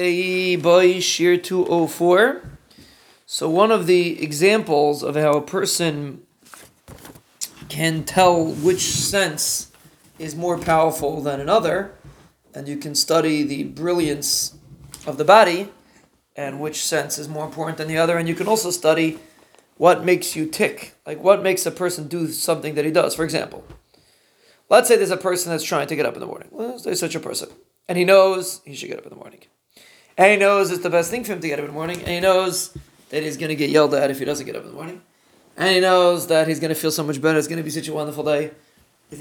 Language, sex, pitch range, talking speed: English, male, 150-185 Hz, 210 wpm